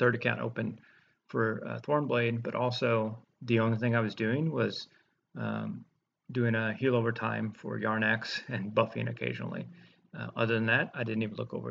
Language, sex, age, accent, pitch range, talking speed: English, male, 30-49, American, 110-130 Hz, 180 wpm